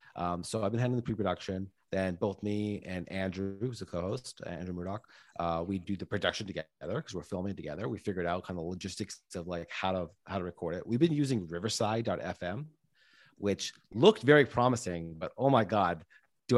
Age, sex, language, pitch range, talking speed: 30-49, male, English, 95-125 Hz, 190 wpm